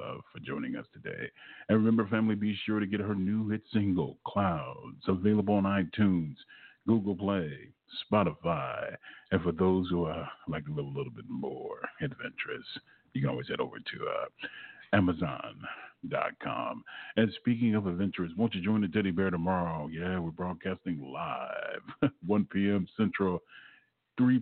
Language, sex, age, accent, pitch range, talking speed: English, male, 40-59, American, 85-105 Hz, 150 wpm